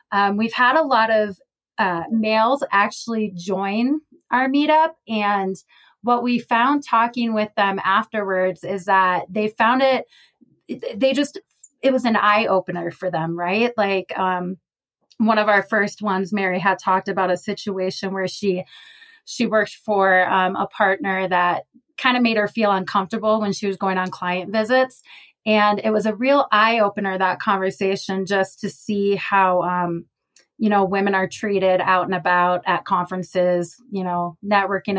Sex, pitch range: female, 190-225 Hz